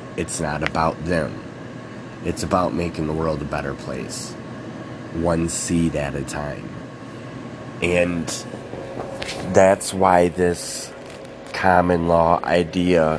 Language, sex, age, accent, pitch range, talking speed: English, male, 30-49, American, 80-90 Hz, 110 wpm